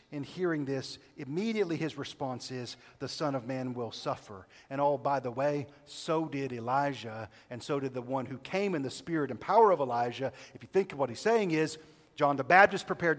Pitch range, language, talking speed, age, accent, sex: 130-175 Hz, English, 215 wpm, 40-59, American, male